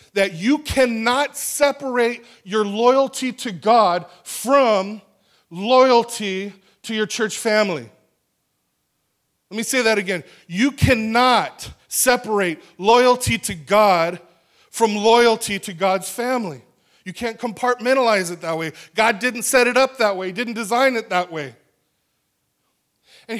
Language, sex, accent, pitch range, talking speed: English, male, American, 190-255 Hz, 125 wpm